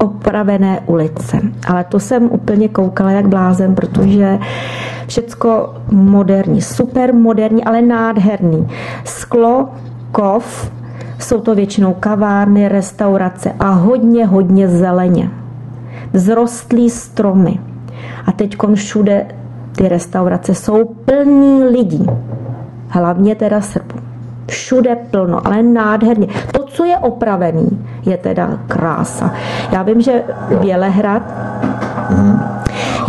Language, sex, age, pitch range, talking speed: Czech, female, 40-59, 170-215 Hz, 100 wpm